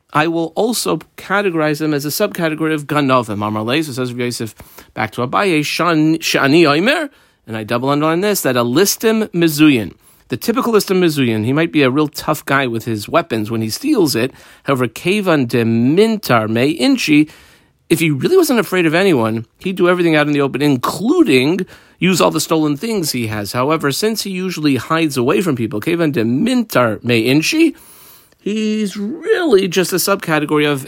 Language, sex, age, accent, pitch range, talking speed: English, male, 40-59, American, 125-185 Hz, 185 wpm